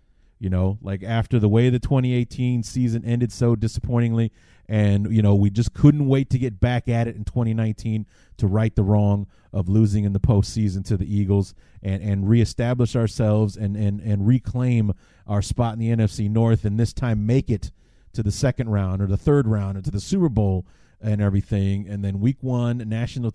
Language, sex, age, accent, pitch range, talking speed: English, male, 30-49, American, 100-120 Hz, 200 wpm